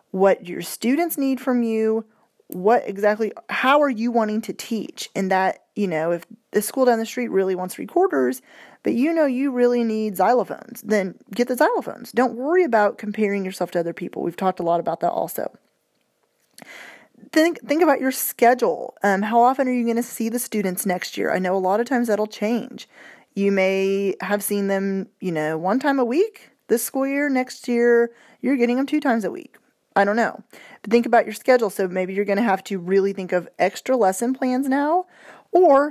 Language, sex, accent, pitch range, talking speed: English, female, American, 185-245 Hz, 205 wpm